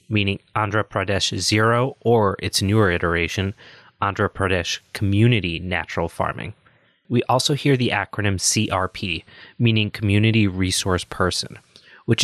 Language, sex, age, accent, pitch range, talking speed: English, male, 20-39, American, 95-115 Hz, 120 wpm